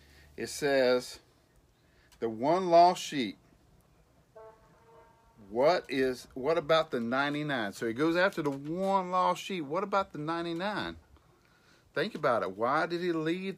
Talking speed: 135 wpm